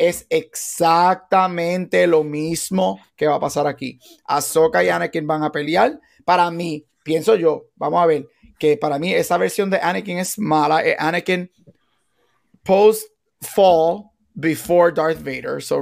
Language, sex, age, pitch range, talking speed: Spanish, male, 30-49, 150-185 Hz, 145 wpm